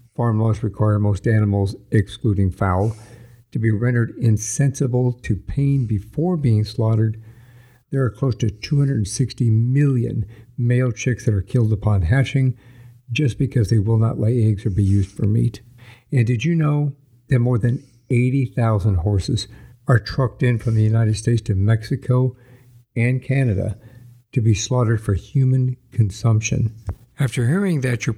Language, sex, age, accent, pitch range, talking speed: English, male, 60-79, American, 110-130 Hz, 150 wpm